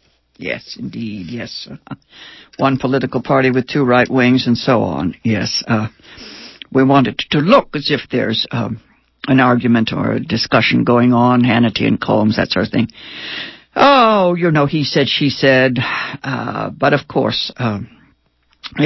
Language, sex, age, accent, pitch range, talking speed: English, female, 60-79, American, 120-170 Hz, 160 wpm